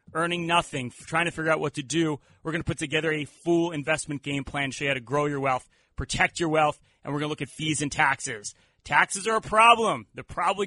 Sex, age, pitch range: male, 30-49, 140-165 Hz